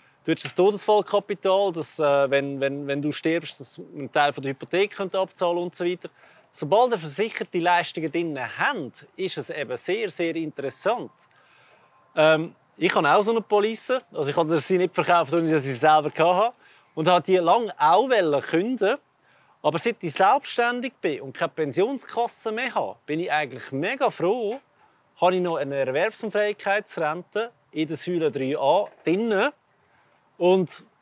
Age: 30-49